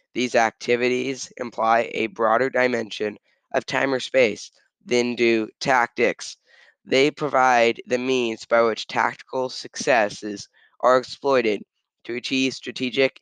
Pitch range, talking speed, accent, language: 115-130 Hz, 120 wpm, American, English